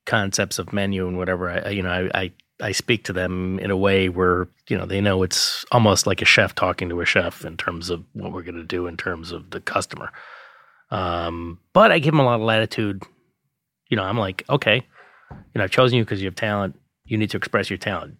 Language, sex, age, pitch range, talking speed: English, male, 30-49, 90-105 Hz, 240 wpm